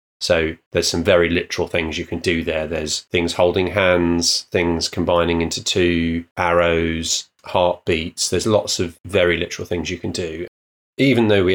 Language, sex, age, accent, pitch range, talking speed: English, male, 30-49, British, 85-95 Hz, 165 wpm